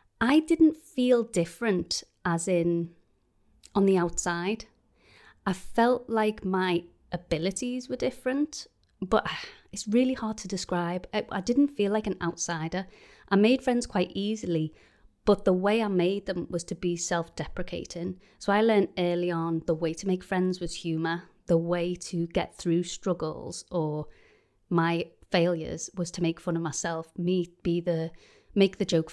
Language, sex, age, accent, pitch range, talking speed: English, female, 30-49, British, 170-205 Hz, 160 wpm